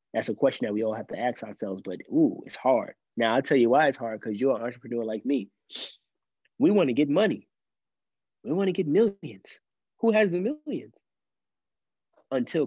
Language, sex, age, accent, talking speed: English, male, 20-39, American, 200 wpm